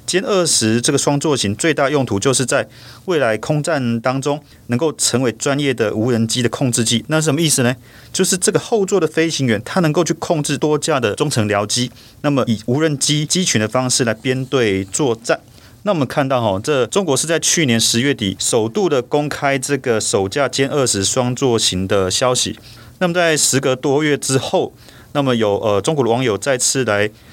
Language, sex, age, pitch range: Chinese, male, 30-49, 115-150 Hz